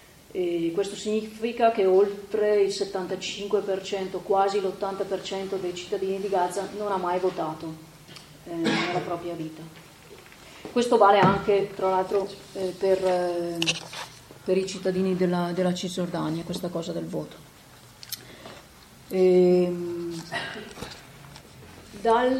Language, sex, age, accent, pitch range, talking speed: Italian, female, 30-49, native, 175-195 Hz, 110 wpm